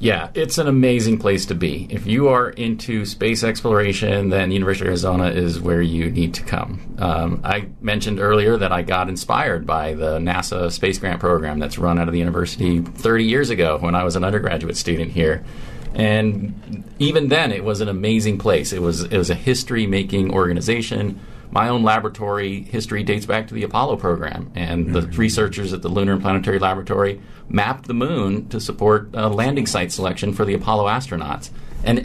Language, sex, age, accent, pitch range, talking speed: English, male, 40-59, American, 85-110 Hz, 190 wpm